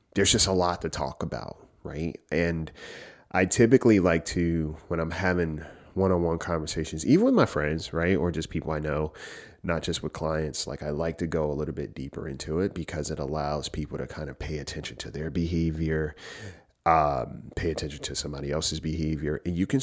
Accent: American